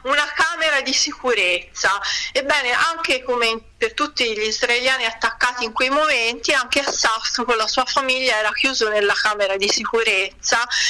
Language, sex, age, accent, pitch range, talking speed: Italian, female, 40-59, native, 225-280 Hz, 155 wpm